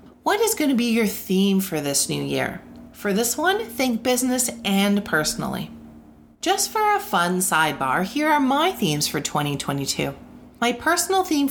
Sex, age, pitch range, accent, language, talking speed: female, 30-49, 185-260 Hz, American, English, 165 wpm